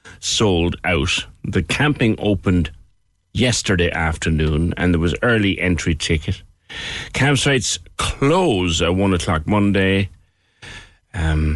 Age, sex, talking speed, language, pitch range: 60-79, male, 105 wpm, English, 85-110 Hz